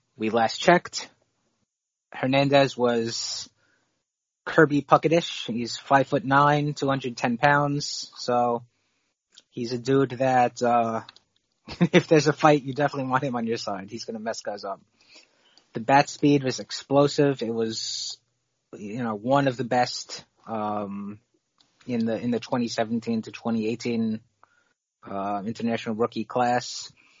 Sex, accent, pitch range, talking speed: male, American, 115-135 Hz, 135 wpm